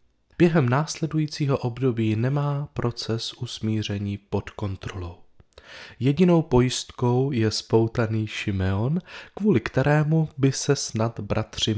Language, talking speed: Czech, 95 wpm